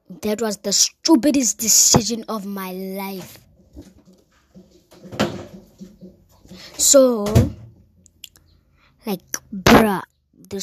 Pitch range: 195-250 Hz